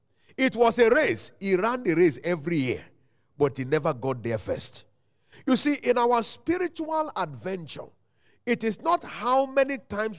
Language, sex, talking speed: English, male, 165 wpm